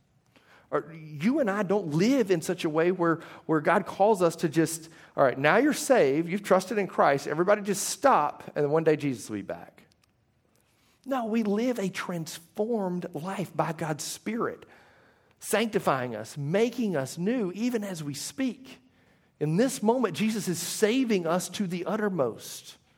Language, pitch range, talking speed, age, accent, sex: English, 145-205 Hz, 165 wpm, 50-69, American, male